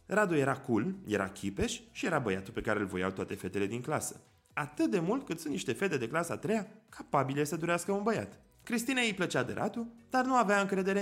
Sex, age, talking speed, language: male, 20-39, 220 wpm, Romanian